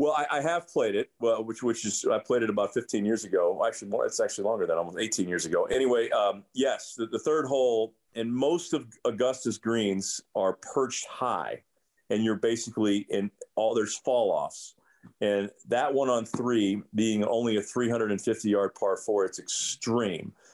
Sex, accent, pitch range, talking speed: male, American, 105-135 Hz, 195 wpm